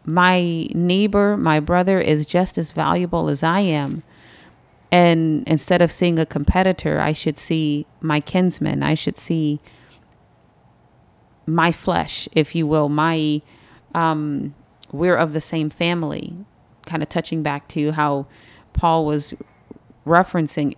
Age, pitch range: 30-49, 150-175 Hz